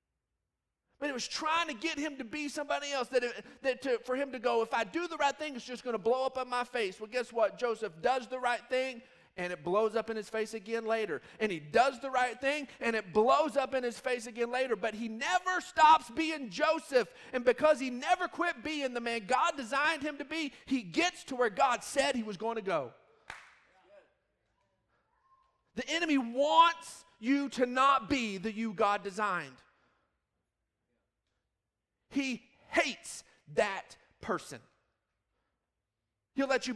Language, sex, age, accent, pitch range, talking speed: English, male, 40-59, American, 215-275 Hz, 190 wpm